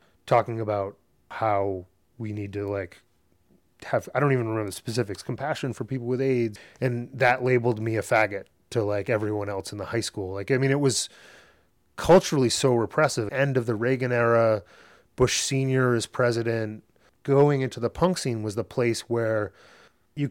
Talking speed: 175 wpm